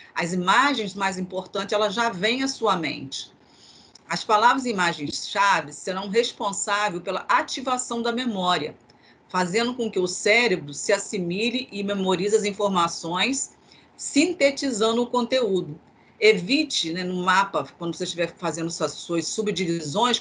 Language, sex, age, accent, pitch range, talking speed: Portuguese, female, 40-59, Brazilian, 175-230 Hz, 135 wpm